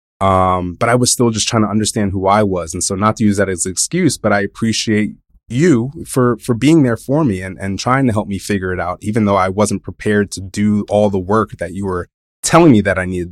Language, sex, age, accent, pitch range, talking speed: English, male, 20-39, American, 90-115 Hz, 260 wpm